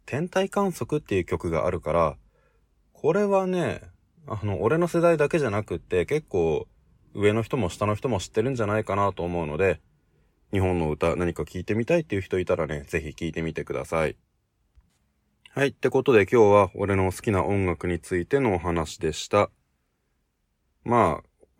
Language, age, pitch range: Japanese, 20-39, 90-135 Hz